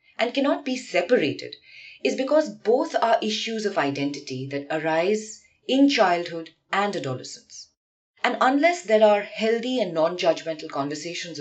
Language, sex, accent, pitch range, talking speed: English, female, Indian, 155-230 Hz, 130 wpm